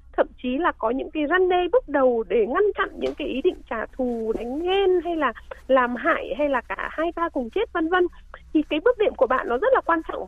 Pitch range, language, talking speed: 260-370 Hz, Vietnamese, 265 wpm